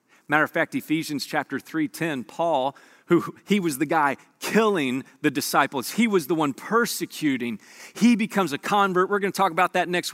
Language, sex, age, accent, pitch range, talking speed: English, male, 40-59, American, 185-245 Hz, 190 wpm